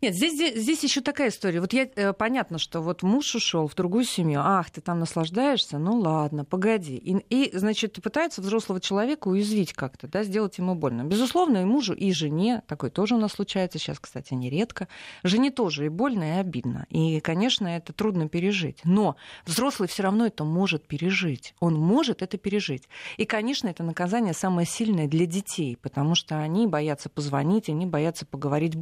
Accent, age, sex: native, 30-49, female